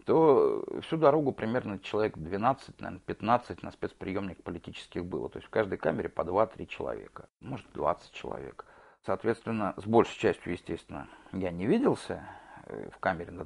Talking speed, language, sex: 140 wpm, Russian, male